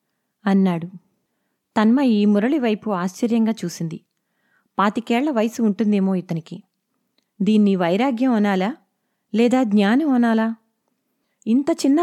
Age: 20-39